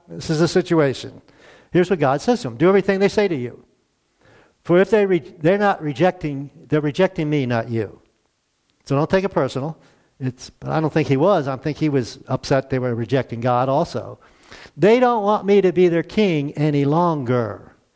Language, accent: English, American